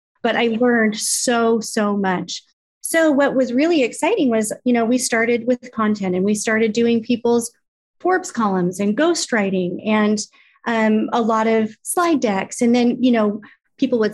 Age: 30-49